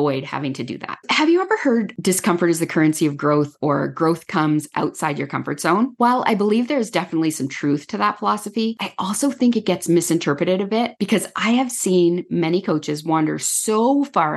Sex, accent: female, American